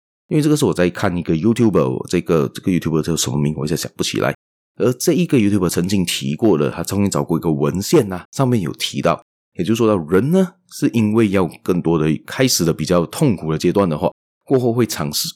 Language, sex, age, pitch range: Chinese, male, 30-49, 80-120 Hz